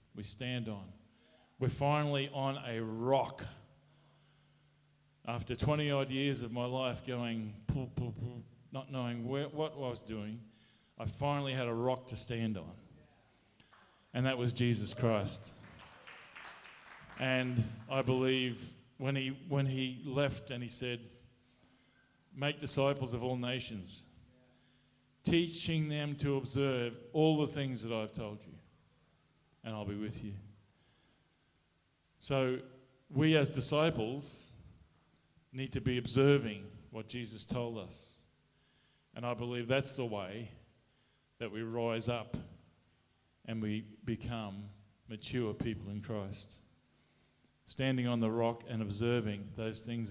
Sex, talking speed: male, 125 wpm